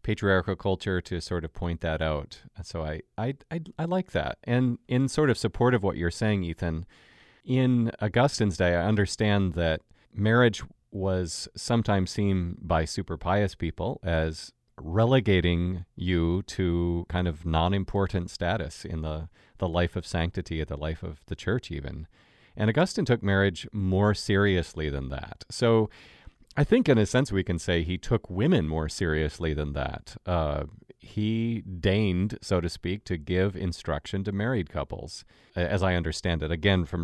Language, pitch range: English, 85-105 Hz